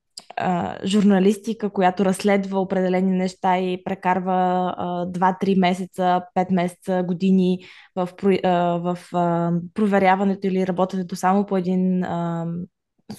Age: 20-39